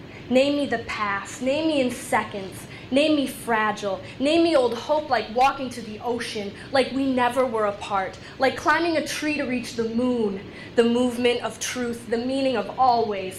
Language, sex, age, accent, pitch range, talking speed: English, female, 10-29, American, 235-285 Hz, 185 wpm